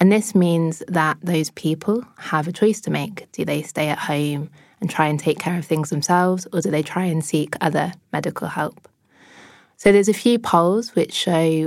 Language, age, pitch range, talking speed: English, 20-39, 160-185 Hz, 205 wpm